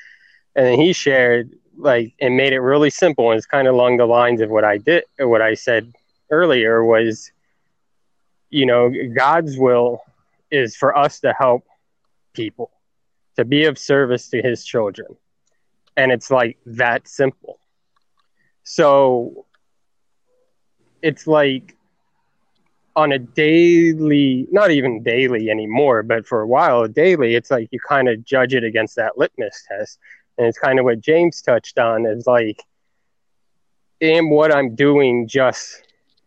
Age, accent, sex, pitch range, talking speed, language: 20-39, American, male, 115-145 Hz, 150 wpm, English